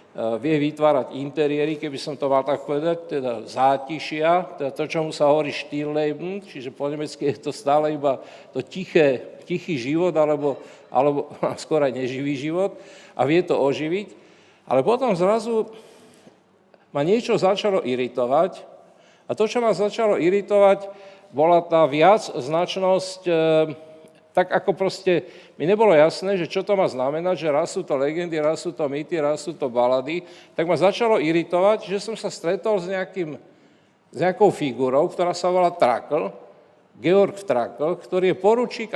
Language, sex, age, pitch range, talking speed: Slovak, male, 50-69, 150-195 Hz, 155 wpm